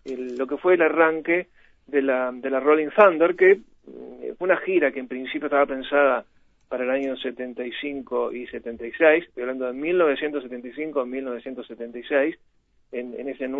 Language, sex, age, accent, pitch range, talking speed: Spanish, male, 30-49, Argentinian, 120-150 Hz, 150 wpm